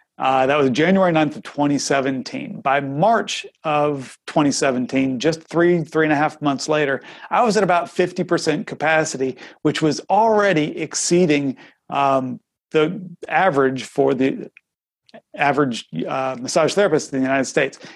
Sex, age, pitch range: male, 40-59, 135-160 Hz